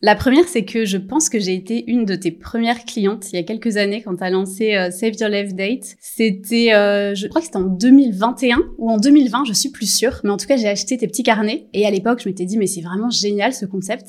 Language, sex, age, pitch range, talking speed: French, female, 20-39, 200-235 Hz, 275 wpm